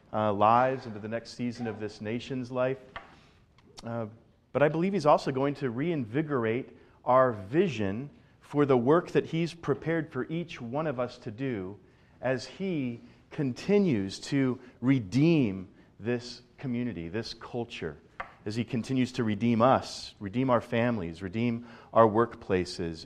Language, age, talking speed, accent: English, 40-59, 145 wpm, American